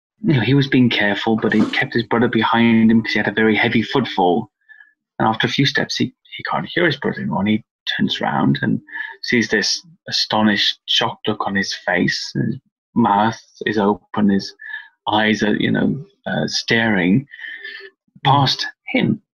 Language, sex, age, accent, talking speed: English, male, 20-39, British, 180 wpm